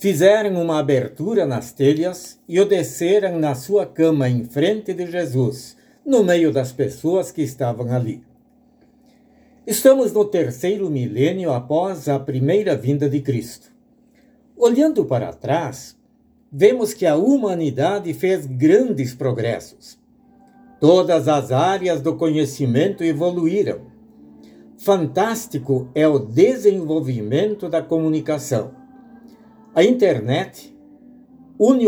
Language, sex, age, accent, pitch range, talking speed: Portuguese, male, 60-79, Brazilian, 140-225 Hz, 105 wpm